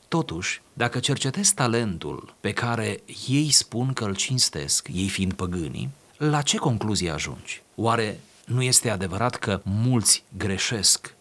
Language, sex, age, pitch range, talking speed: Romanian, male, 30-49, 95-125 Hz, 135 wpm